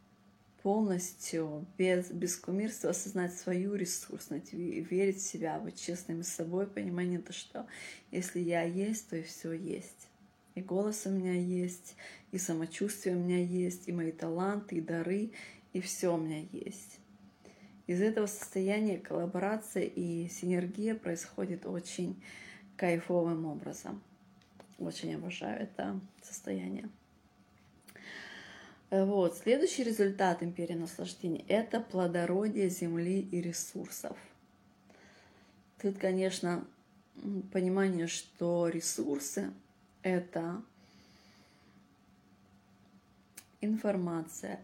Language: Russian